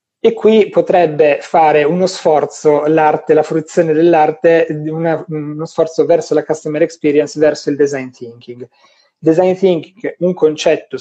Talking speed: 135 wpm